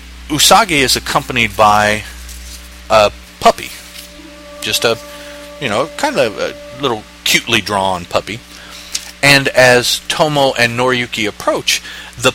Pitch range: 95-135 Hz